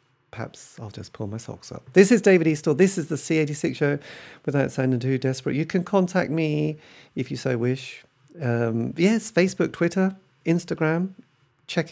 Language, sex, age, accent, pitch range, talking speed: English, male, 40-59, British, 115-155 Hz, 170 wpm